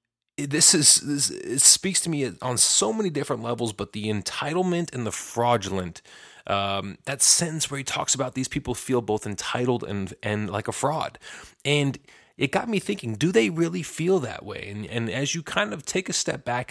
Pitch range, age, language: 100-140 Hz, 30-49, English